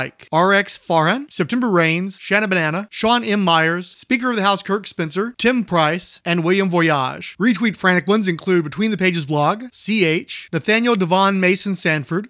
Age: 30-49